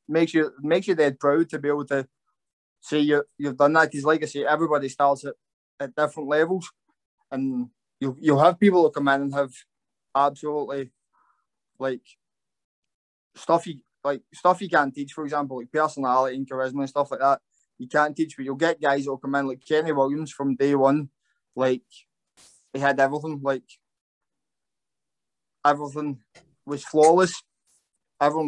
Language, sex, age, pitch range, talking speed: English, male, 20-39, 135-160 Hz, 170 wpm